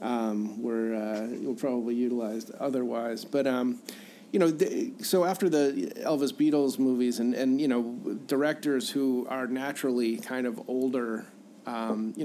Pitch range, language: 115-130 Hz, English